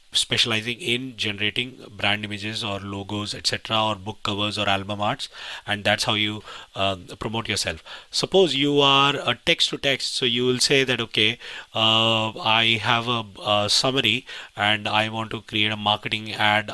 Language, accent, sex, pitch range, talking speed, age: English, Indian, male, 105-135 Hz, 170 wpm, 30-49